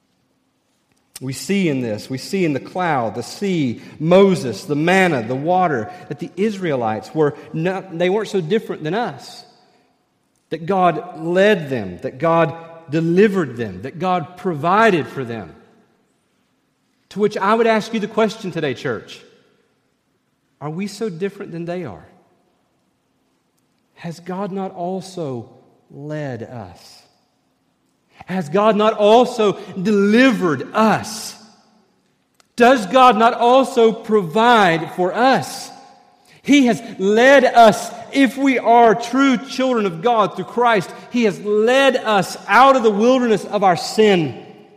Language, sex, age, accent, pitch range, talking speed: English, male, 40-59, American, 170-230 Hz, 135 wpm